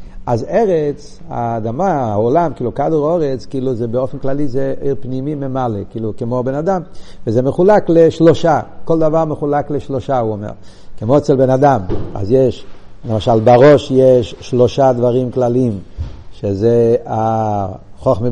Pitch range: 115-155 Hz